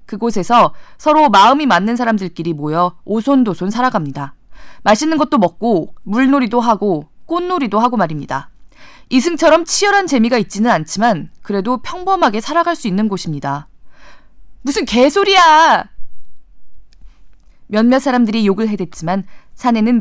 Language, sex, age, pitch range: Korean, female, 20-39, 190-275 Hz